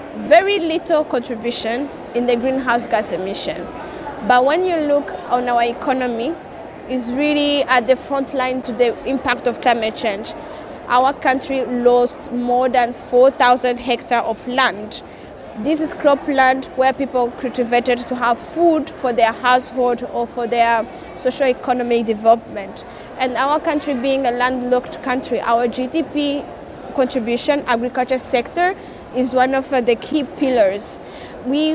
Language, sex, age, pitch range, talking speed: English, female, 20-39, 245-275 Hz, 140 wpm